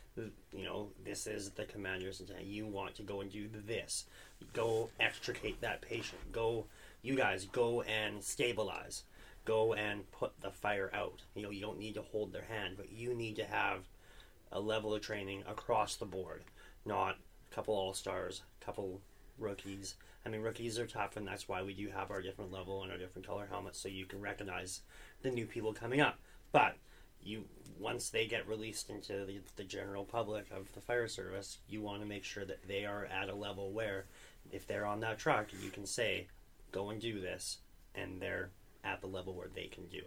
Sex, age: male, 30-49